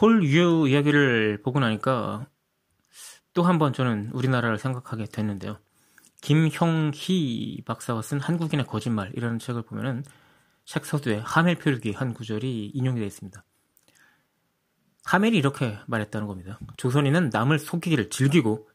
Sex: male